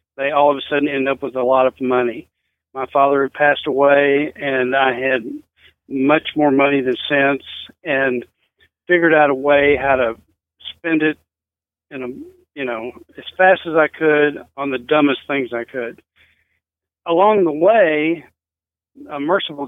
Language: English